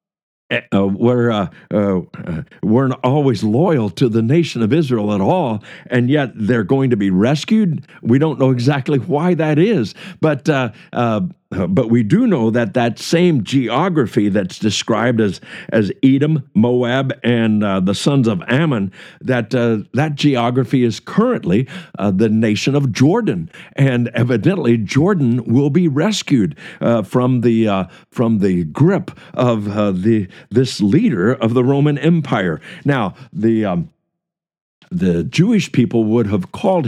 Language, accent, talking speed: English, American, 155 wpm